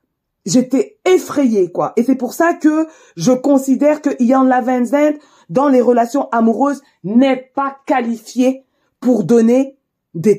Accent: French